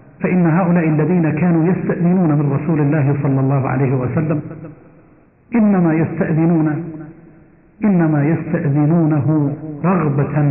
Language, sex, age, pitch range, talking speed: Arabic, male, 50-69, 145-170 Hz, 95 wpm